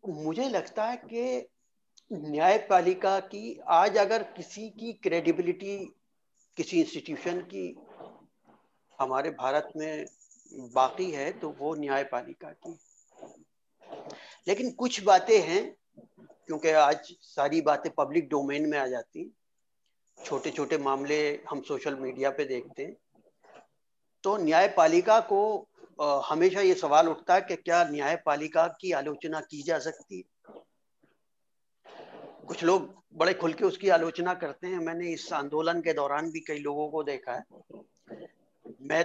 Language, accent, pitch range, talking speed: Hindi, native, 155-215 Hz, 130 wpm